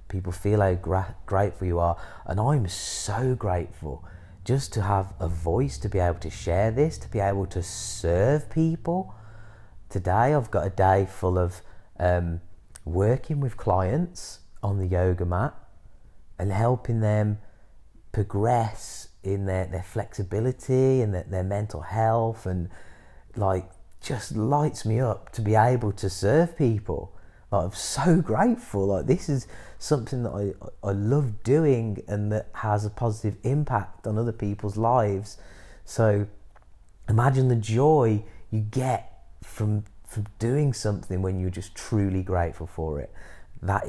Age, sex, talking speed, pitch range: 30-49, male, 150 wpm, 90-115 Hz